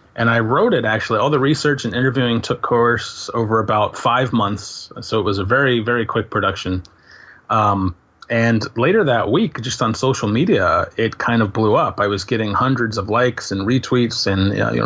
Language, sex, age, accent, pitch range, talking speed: English, male, 30-49, American, 105-120 Hz, 195 wpm